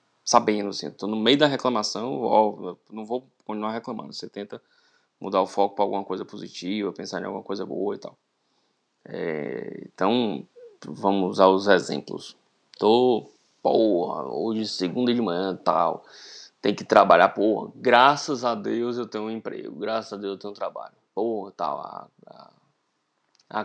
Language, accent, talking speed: Portuguese, Brazilian, 160 wpm